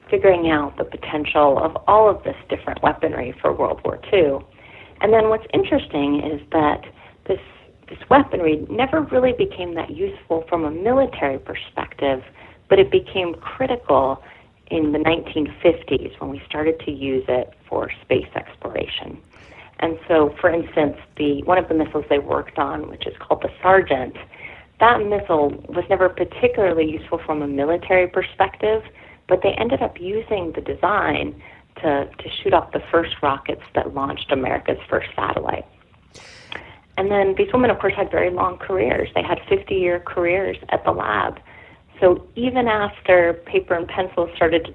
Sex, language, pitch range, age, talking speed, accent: female, English, 150-205 Hz, 30-49, 160 wpm, American